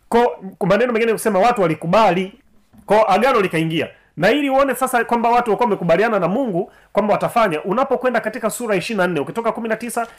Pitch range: 180-240 Hz